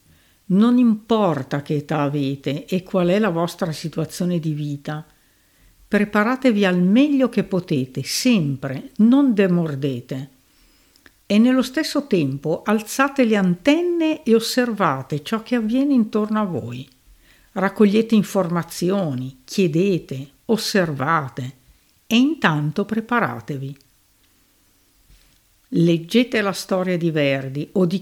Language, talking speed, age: Italian, 105 wpm, 60-79